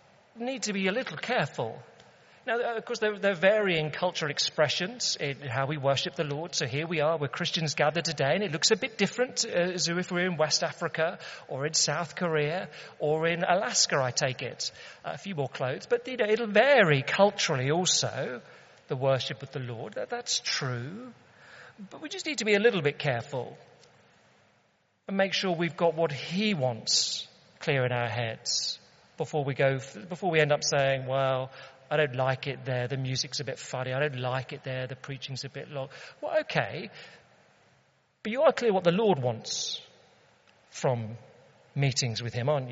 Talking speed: 185 wpm